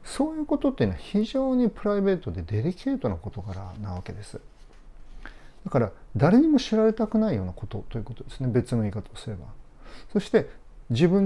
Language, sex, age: Japanese, male, 40-59